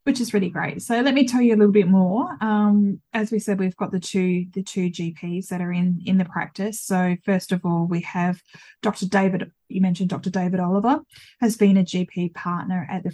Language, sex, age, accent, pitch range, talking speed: English, female, 10-29, Australian, 180-215 Hz, 230 wpm